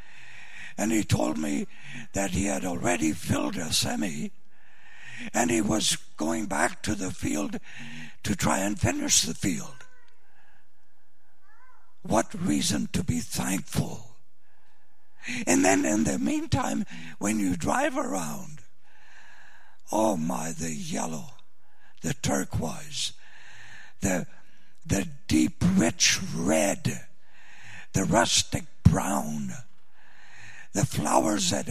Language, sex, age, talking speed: English, male, 60-79, 105 wpm